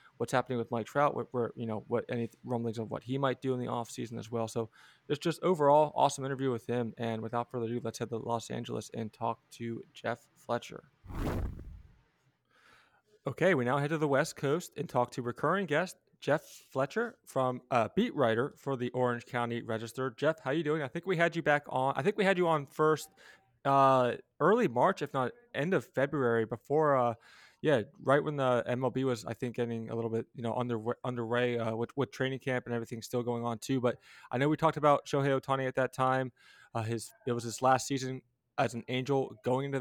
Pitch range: 120-140 Hz